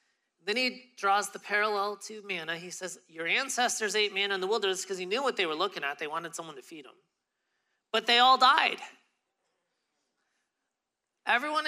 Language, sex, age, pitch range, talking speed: English, male, 30-49, 170-235 Hz, 180 wpm